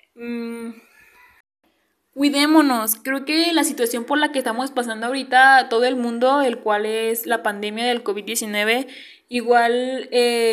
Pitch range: 225-270 Hz